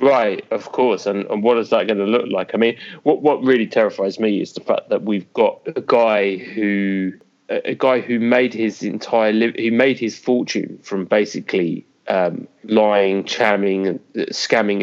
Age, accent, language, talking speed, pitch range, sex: 20-39, British, English, 180 wpm, 95-115 Hz, male